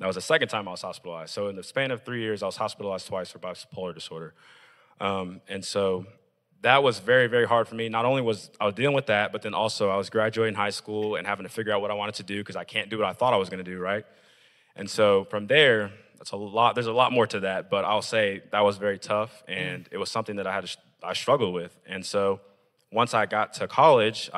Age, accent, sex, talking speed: 20-39, American, male, 270 wpm